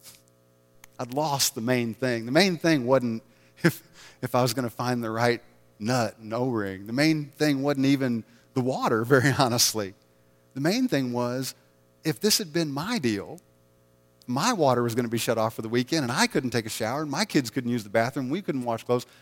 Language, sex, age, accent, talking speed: English, male, 40-59, American, 210 wpm